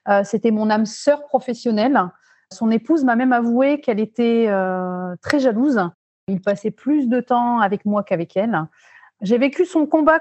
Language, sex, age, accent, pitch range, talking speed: English, female, 30-49, French, 205-265 Hz, 165 wpm